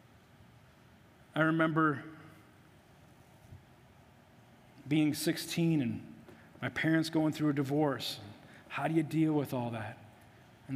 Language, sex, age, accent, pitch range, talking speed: English, male, 40-59, American, 135-170 Hz, 110 wpm